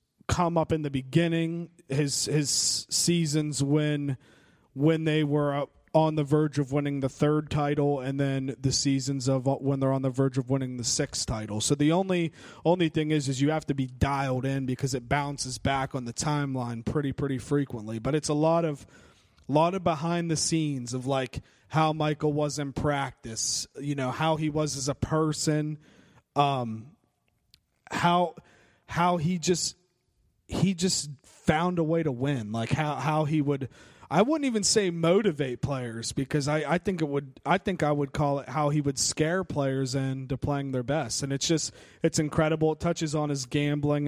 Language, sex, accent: English, male, American